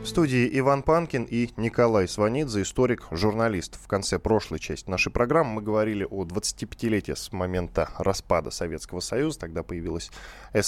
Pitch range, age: 95-125 Hz, 10-29